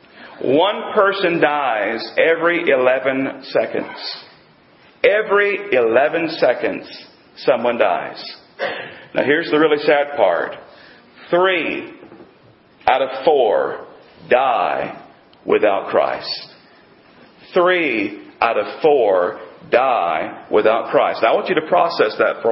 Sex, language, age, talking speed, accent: male, English, 40-59, 100 wpm, American